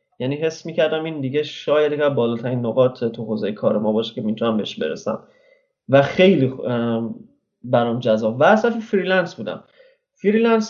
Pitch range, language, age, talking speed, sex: 125-170 Hz, Persian, 30-49, 150 wpm, male